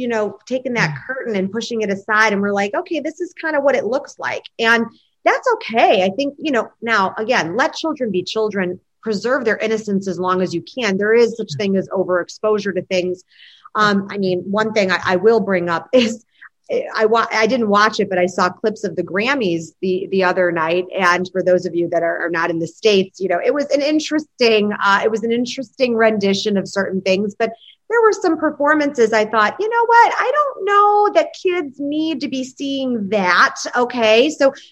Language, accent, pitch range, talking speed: English, American, 200-280 Hz, 220 wpm